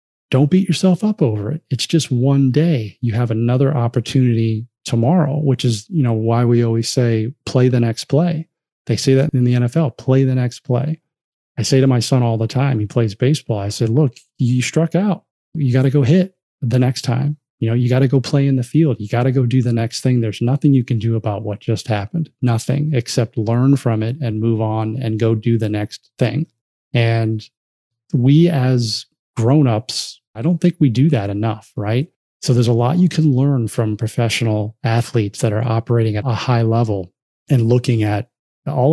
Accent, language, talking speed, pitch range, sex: American, English, 210 wpm, 115-135 Hz, male